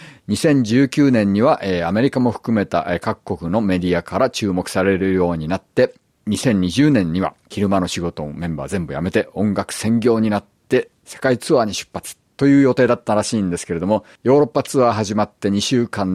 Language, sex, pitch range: Japanese, male, 90-115 Hz